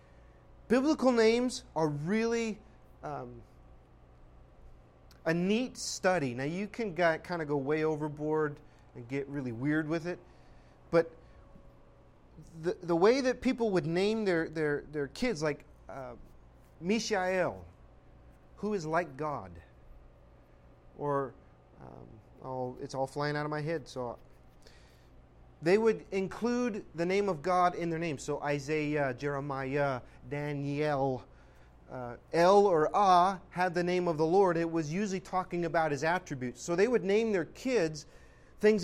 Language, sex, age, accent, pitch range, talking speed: English, male, 30-49, American, 135-185 Hz, 135 wpm